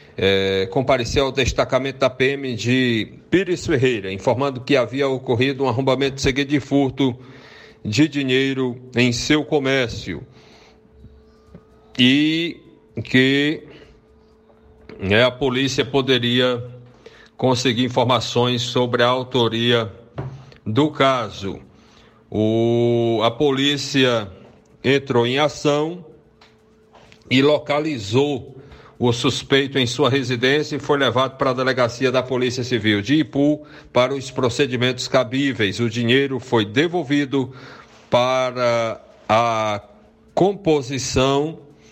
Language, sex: Portuguese, male